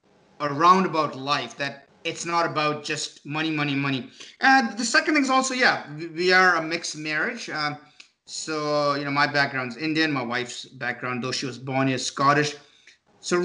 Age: 30-49